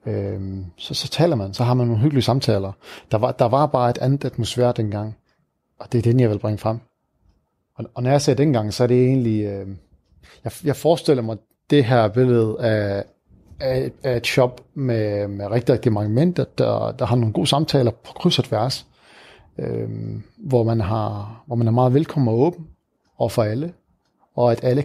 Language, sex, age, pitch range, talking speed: Danish, male, 30-49, 110-130 Hz, 200 wpm